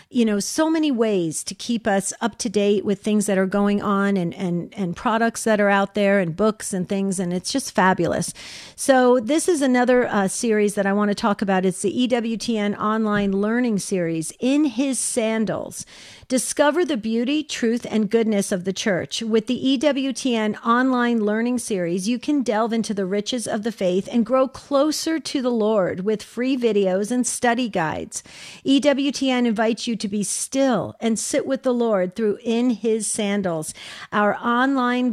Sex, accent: female, American